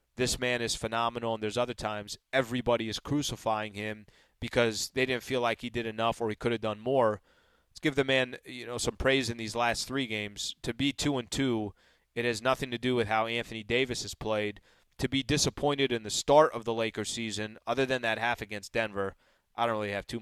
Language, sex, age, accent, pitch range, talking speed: English, male, 20-39, American, 110-135 Hz, 230 wpm